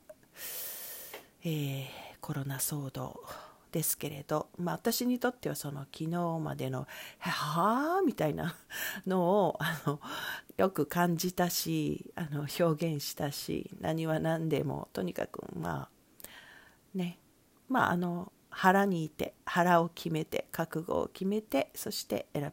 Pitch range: 150-195 Hz